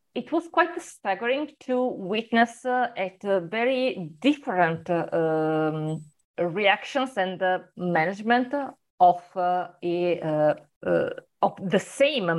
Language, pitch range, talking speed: English, 175-240 Hz, 120 wpm